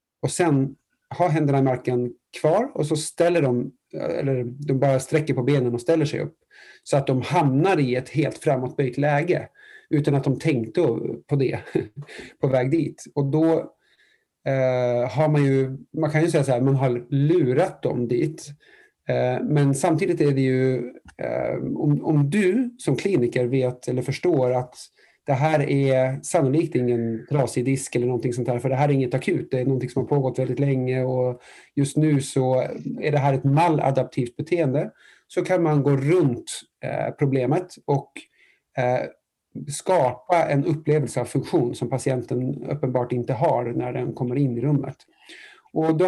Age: 30-49